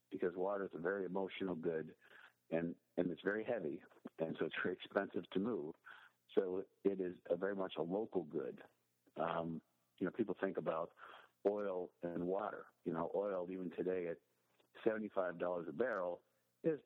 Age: 60-79